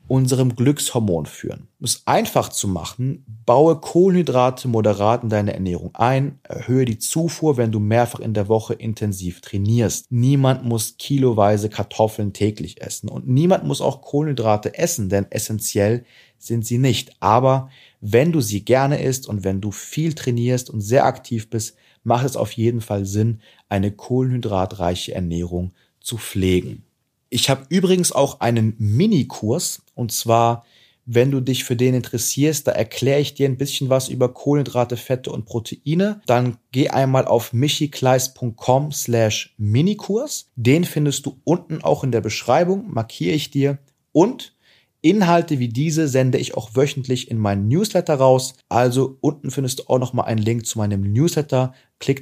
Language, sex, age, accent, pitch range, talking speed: German, male, 30-49, German, 110-135 Hz, 155 wpm